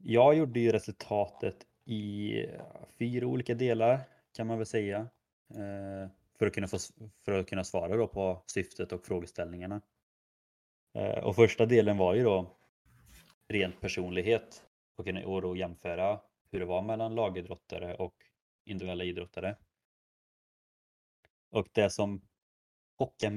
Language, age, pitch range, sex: Swedish, 20-39, 95-115 Hz, male